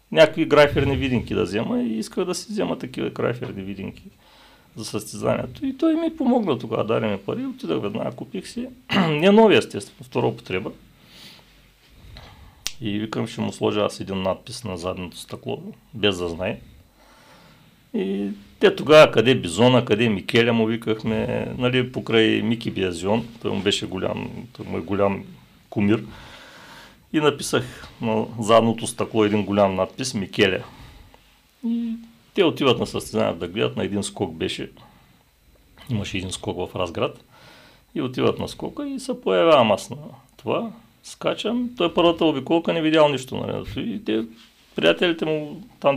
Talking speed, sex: 150 wpm, male